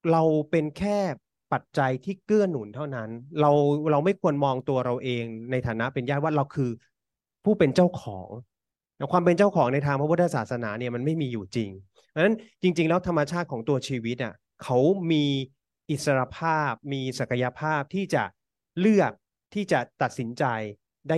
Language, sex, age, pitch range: Thai, male, 30-49, 125-170 Hz